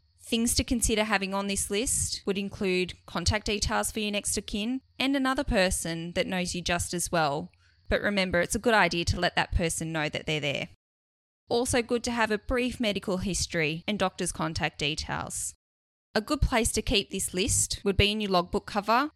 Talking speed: 200 wpm